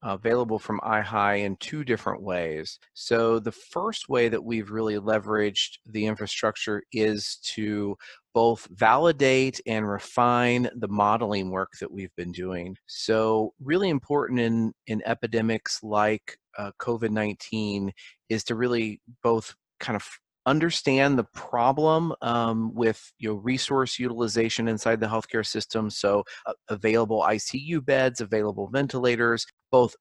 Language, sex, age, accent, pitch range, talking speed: English, male, 30-49, American, 105-120 Hz, 130 wpm